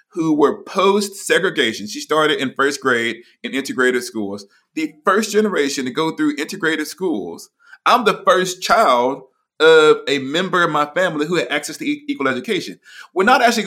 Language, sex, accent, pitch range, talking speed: English, male, American, 140-205 Hz, 165 wpm